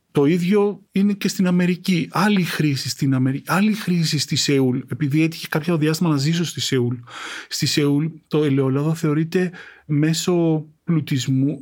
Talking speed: 150 wpm